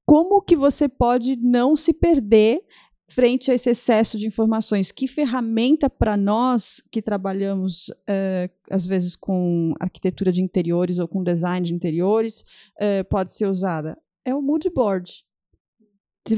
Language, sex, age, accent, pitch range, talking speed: Portuguese, female, 30-49, Brazilian, 195-275 Hz, 145 wpm